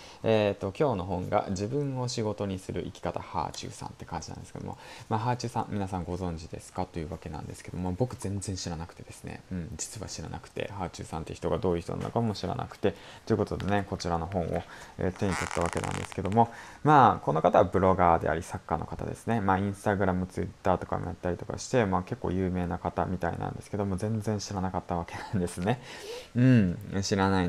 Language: Japanese